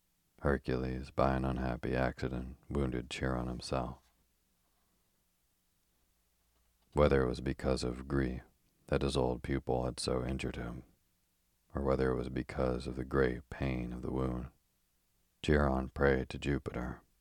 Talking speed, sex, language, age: 135 wpm, male, English, 40-59